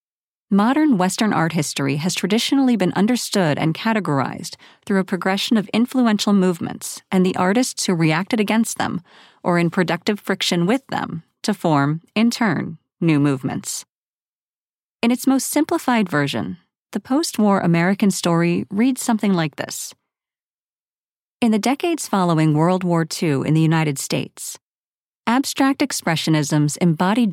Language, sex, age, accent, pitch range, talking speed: English, female, 40-59, American, 170-225 Hz, 135 wpm